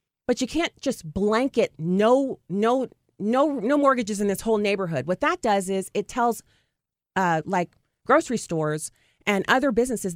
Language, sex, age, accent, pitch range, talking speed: English, female, 30-49, American, 180-235 Hz, 160 wpm